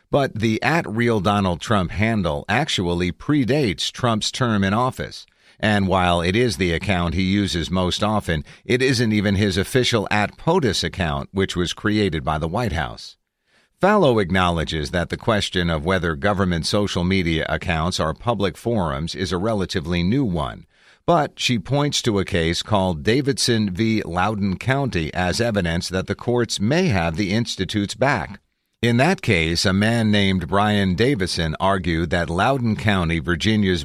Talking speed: 155 wpm